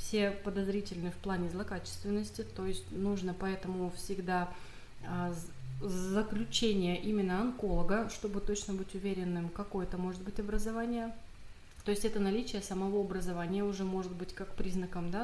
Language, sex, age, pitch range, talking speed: Russian, female, 20-39, 180-210 Hz, 130 wpm